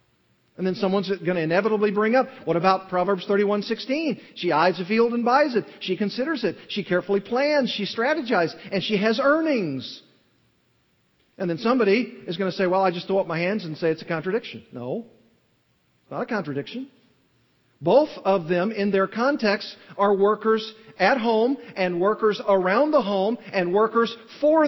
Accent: American